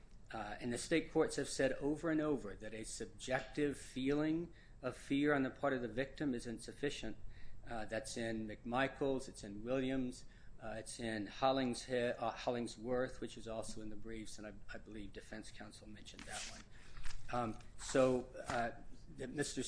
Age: 40-59